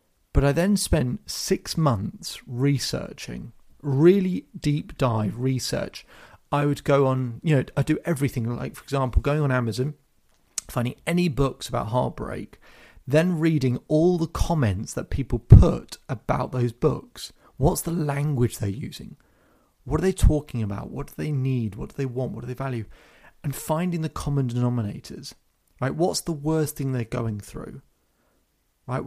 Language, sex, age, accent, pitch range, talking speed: English, male, 30-49, British, 125-160 Hz, 160 wpm